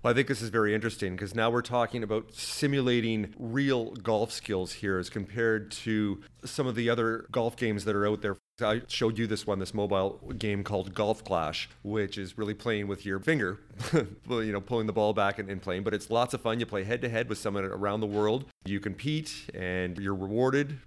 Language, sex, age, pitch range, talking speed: English, male, 40-59, 100-115 Hz, 220 wpm